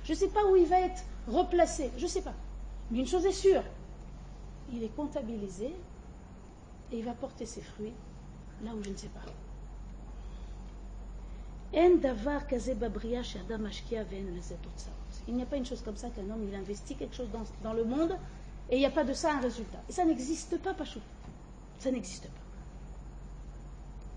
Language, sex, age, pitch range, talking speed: French, female, 40-59, 220-330 Hz, 170 wpm